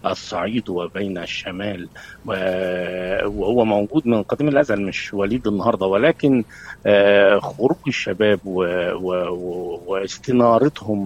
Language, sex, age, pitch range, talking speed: Arabic, male, 50-69, 100-130 Hz, 80 wpm